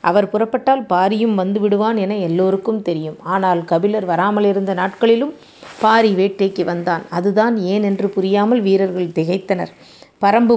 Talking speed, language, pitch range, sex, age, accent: 125 wpm, Tamil, 185-215 Hz, female, 30-49, native